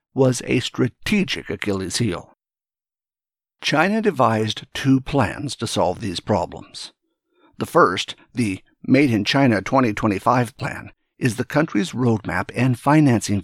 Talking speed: 120 wpm